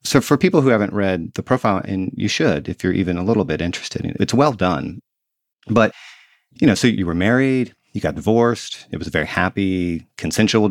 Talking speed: 220 wpm